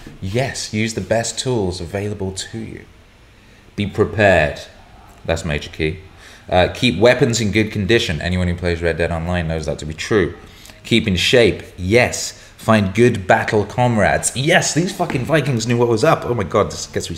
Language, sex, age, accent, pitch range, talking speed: English, male, 30-49, British, 90-115 Hz, 180 wpm